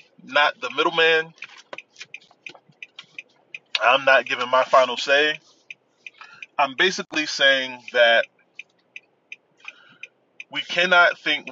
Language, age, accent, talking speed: English, 20-39, American, 85 wpm